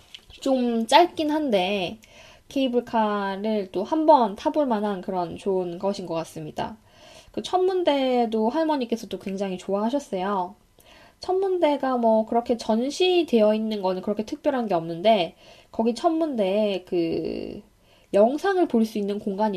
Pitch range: 185-250 Hz